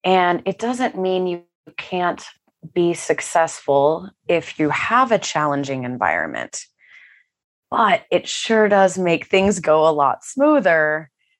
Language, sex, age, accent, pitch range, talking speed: English, female, 20-39, American, 155-190 Hz, 125 wpm